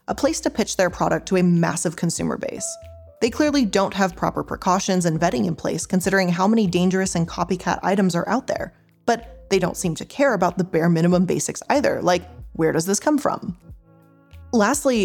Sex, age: female, 20-39